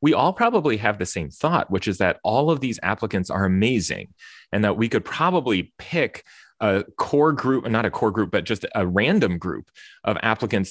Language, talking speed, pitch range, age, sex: English, 200 wpm, 95-125 Hz, 30-49, male